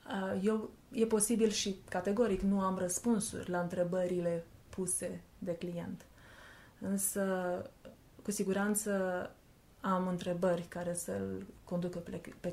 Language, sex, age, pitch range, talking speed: Romanian, female, 20-39, 175-205 Hz, 105 wpm